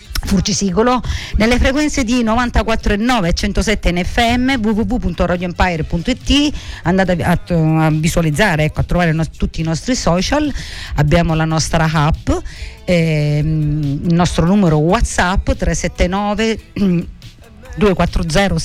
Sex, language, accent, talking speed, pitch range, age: female, Italian, native, 110 wpm, 165-210 Hz, 50-69